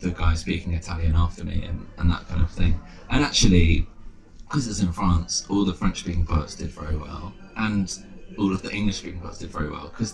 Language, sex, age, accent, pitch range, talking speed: English, male, 20-39, British, 80-100 Hz, 205 wpm